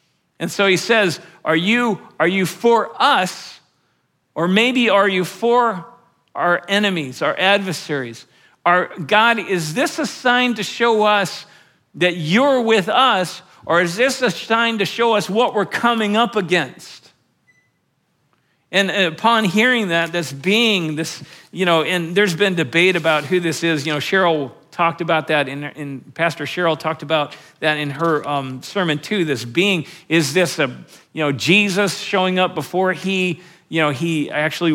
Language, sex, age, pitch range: English, male, 50-69, 155-200 Hz